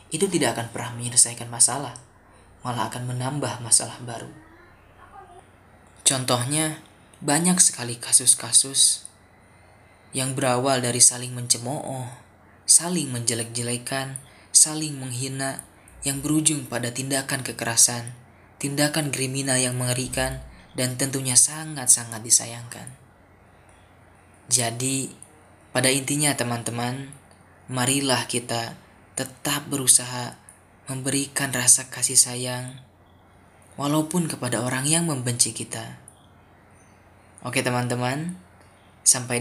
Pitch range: 115-135 Hz